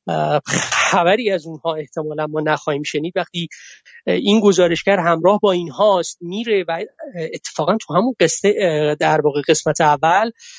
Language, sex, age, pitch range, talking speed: Persian, male, 30-49, 165-205 Hz, 135 wpm